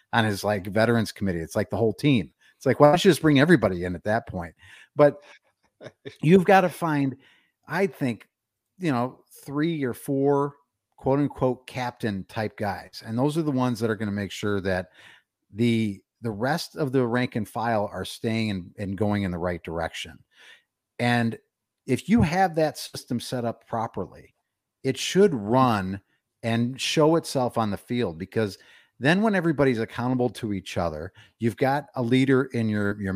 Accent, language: American, English